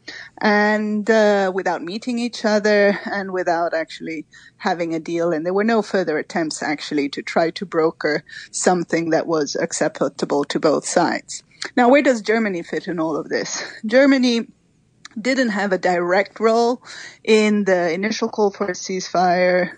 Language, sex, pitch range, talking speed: English, female, 170-215 Hz, 160 wpm